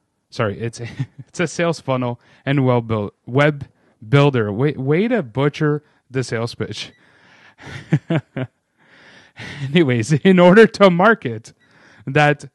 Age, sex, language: 30-49, male, English